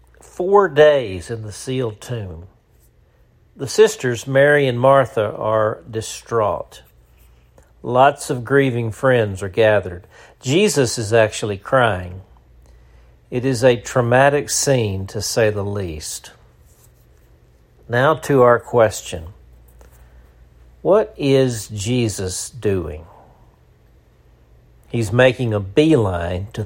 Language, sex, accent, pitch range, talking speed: English, male, American, 80-130 Hz, 100 wpm